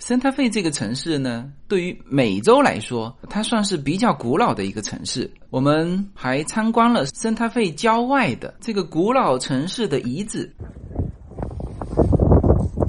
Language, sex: Chinese, male